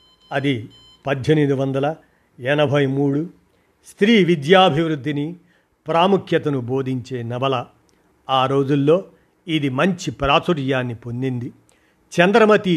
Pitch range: 135-175 Hz